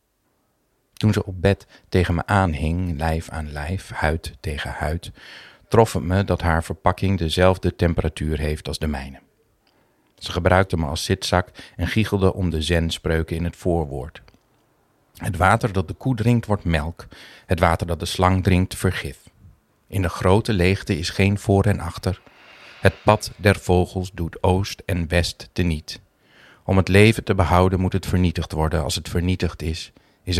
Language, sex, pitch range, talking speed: Dutch, male, 80-95 Hz, 170 wpm